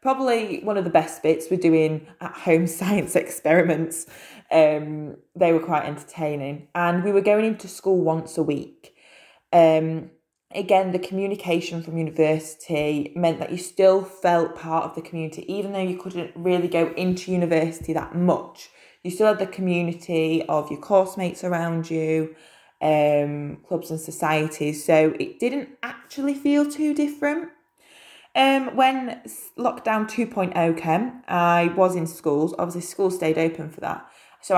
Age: 20-39